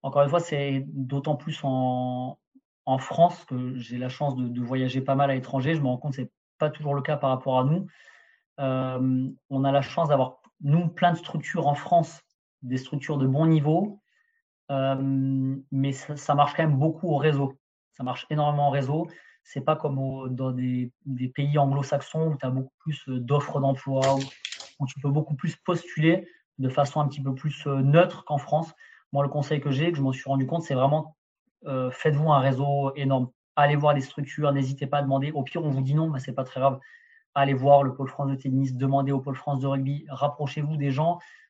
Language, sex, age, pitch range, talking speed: French, male, 30-49, 135-155 Hz, 220 wpm